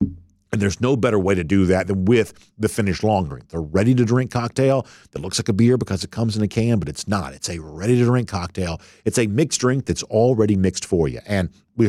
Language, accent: English, American